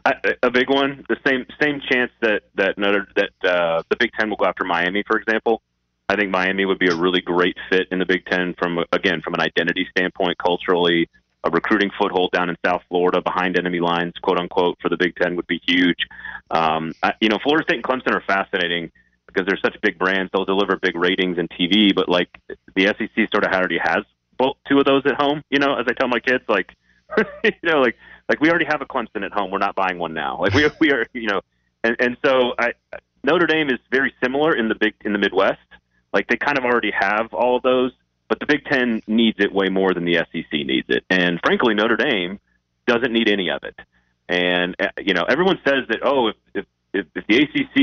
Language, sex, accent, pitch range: English, male, American, 90-120 Hz